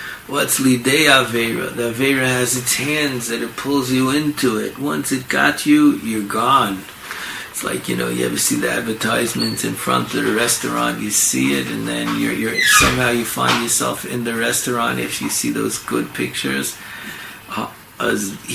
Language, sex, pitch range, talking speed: English, male, 115-160 Hz, 180 wpm